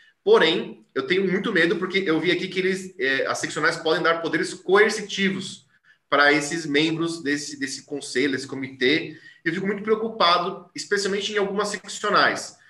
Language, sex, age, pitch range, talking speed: Portuguese, male, 20-39, 160-220 Hz, 165 wpm